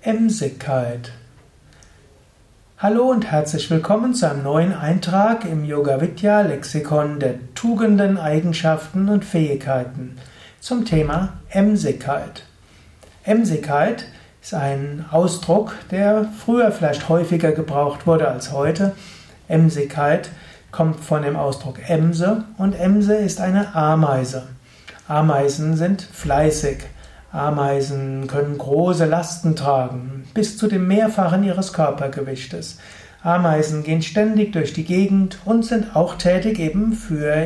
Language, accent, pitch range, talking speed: German, German, 145-200 Hz, 110 wpm